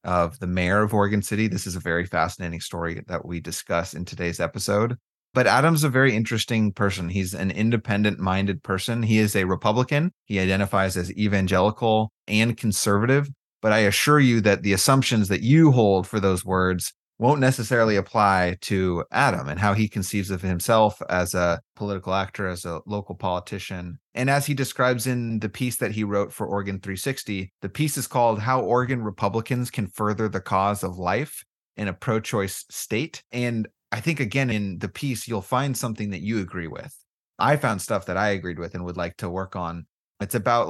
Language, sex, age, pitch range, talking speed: English, male, 30-49, 95-115 Hz, 190 wpm